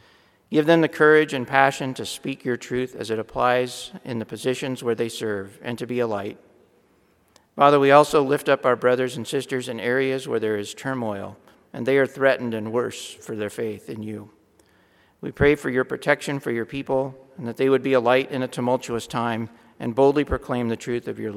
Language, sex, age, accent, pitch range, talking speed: English, male, 50-69, American, 115-135 Hz, 215 wpm